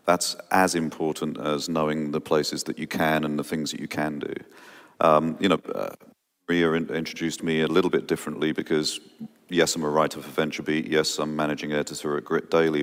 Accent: British